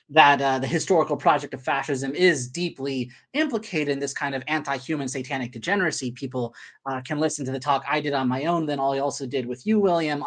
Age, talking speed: 20-39, 210 wpm